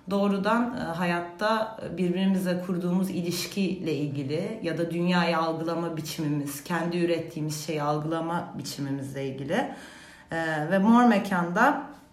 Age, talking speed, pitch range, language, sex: 40-59, 110 wpm, 150-190 Hz, Turkish, female